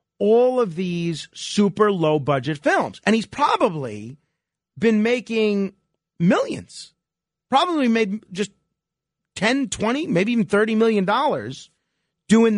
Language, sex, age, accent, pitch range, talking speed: English, male, 40-59, American, 155-215 Hz, 105 wpm